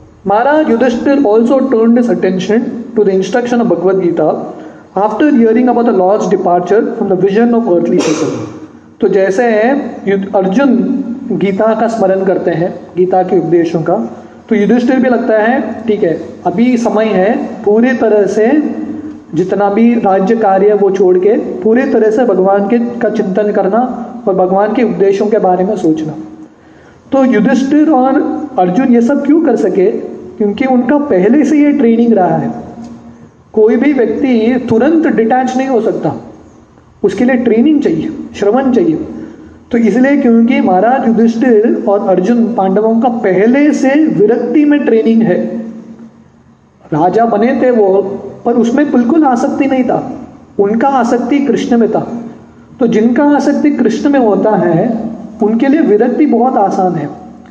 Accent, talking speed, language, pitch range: Indian, 120 wpm, English, 200-255 Hz